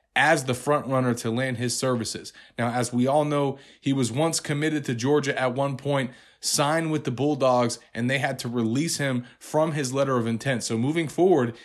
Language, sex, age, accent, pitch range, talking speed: English, male, 30-49, American, 125-155 Hz, 205 wpm